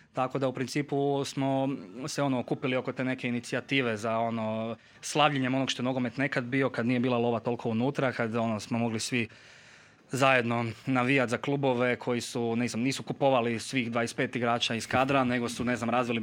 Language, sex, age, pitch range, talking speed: Croatian, male, 20-39, 115-135 Hz, 185 wpm